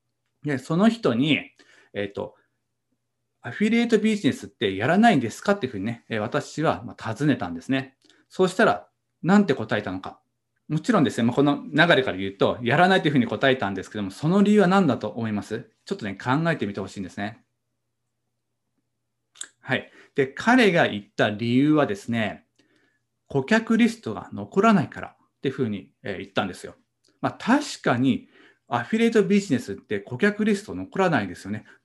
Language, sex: Japanese, male